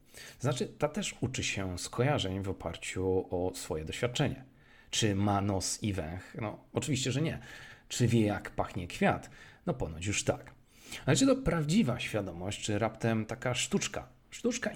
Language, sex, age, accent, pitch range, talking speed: Polish, male, 40-59, native, 95-125 Hz, 160 wpm